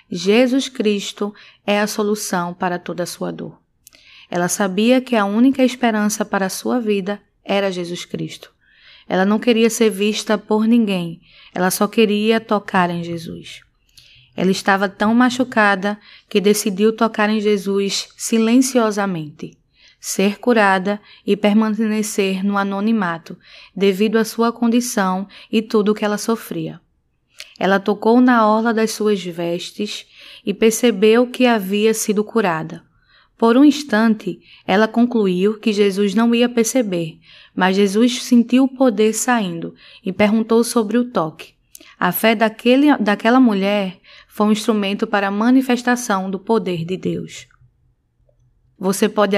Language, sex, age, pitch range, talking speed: Portuguese, female, 20-39, 195-225 Hz, 135 wpm